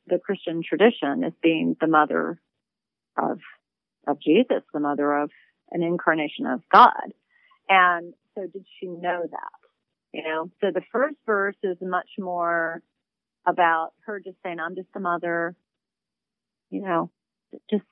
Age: 40-59